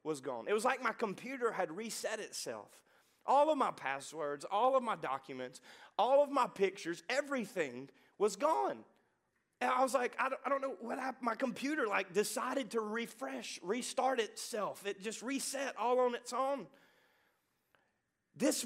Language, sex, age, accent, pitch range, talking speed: English, male, 30-49, American, 195-255 Hz, 160 wpm